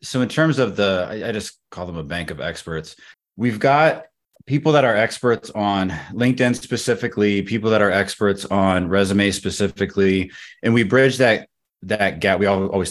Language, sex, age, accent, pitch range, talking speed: English, male, 20-39, American, 90-100 Hz, 170 wpm